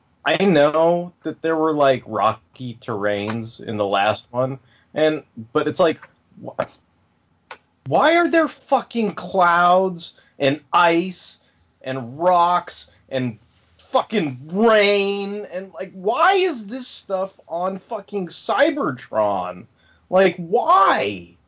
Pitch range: 115-175 Hz